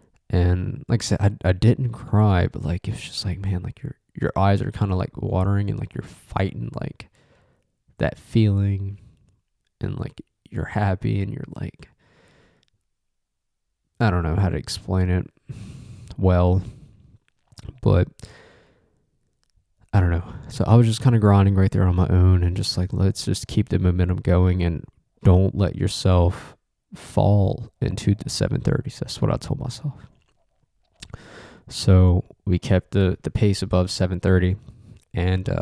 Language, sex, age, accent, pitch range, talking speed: English, male, 20-39, American, 95-115 Hz, 160 wpm